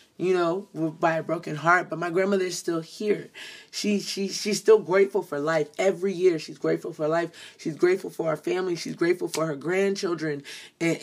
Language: English